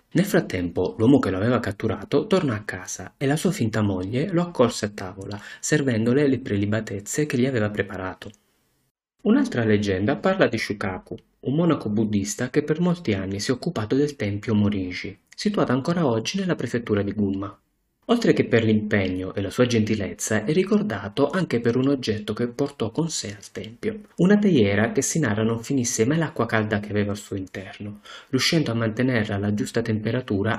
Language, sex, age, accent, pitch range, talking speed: Italian, male, 30-49, native, 100-145 Hz, 180 wpm